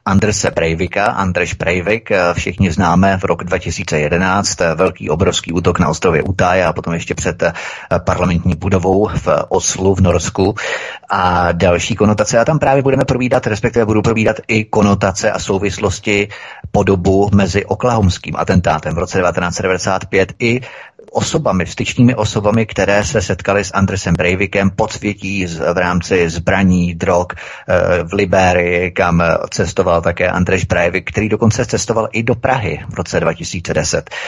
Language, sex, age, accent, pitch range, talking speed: Czech, male, 30-49, native, 90-105 Hz, 140 wpm